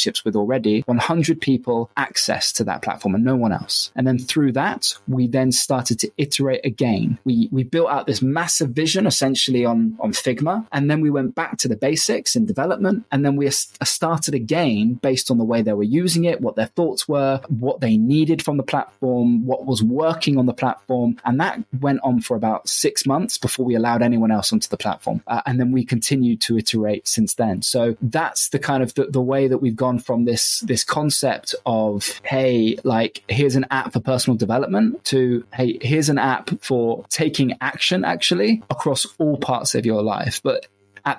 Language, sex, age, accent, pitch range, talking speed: English, male, 20-39, British, 120-145 Hz, 200 wpm